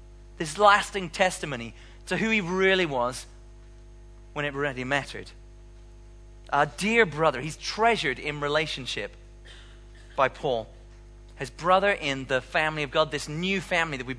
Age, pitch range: 30-49, 115-165 Hz